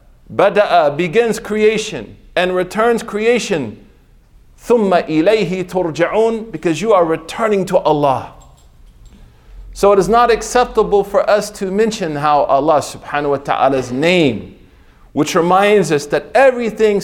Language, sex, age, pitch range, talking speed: English, male, 40-59, 160-220 Hz, 125 wpm